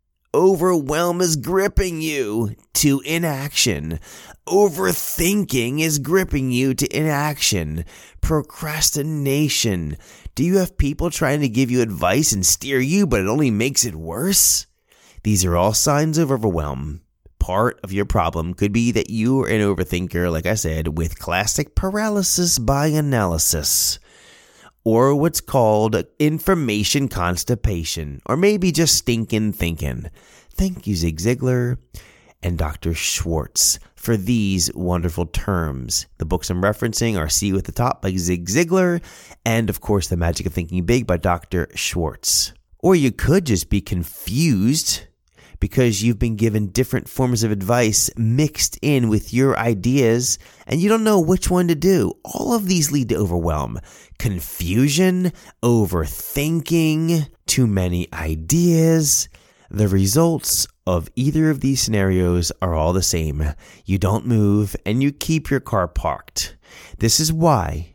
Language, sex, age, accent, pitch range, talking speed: English, male, 30-49, American, 90-150 Hz, 140 wpm